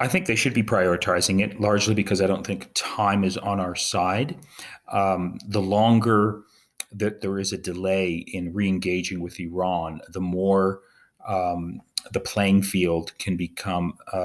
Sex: male